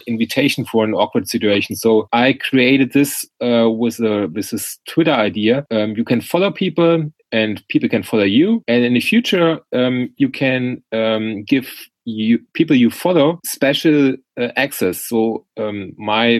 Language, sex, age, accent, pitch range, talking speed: English, male, 30-49, German, 100-130 Hz, 155 wpm